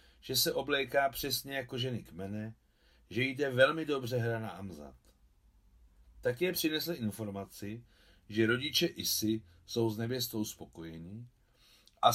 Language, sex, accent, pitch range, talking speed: Czech, male, native, 105-135 Hz, 130 wpm